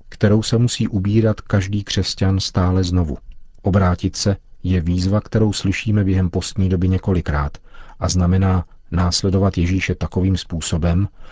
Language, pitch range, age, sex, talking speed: Czech, 90-100 Hz, 40-59, male, 125 wpm